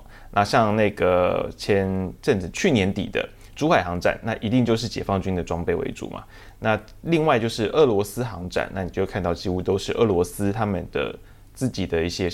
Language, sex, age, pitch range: Chinese, male, 20-39, 95-120 Hz